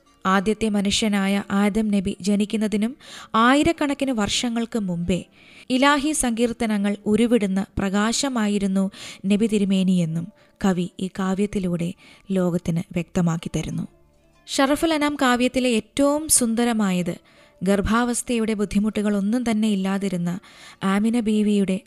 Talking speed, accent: 85 wpm, native